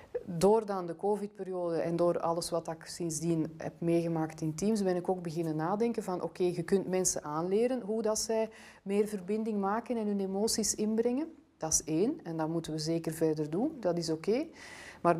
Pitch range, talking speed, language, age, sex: 165-215 Hz, 185 wpm, Dutch, 30-49, female